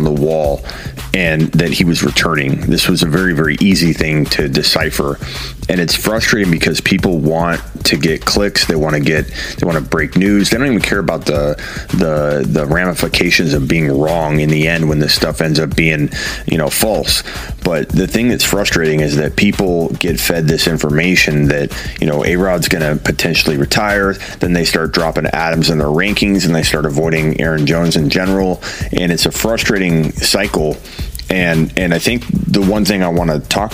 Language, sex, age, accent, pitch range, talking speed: English, male, 30-49, American, 75-90 Hz, 195 wpm